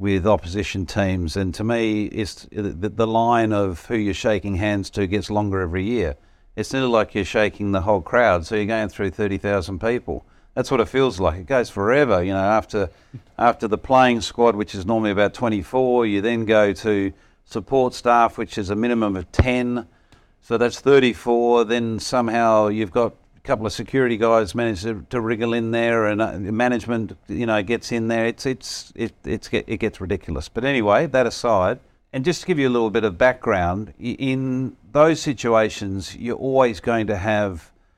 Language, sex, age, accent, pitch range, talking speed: English, male, 50-69, Australian, 100-115 Hz, 190 wpm